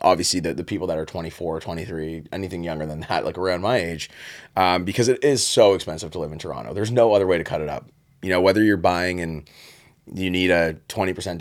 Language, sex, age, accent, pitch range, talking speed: English, male, 30-49, American, 85-110 Hz, 230 wpm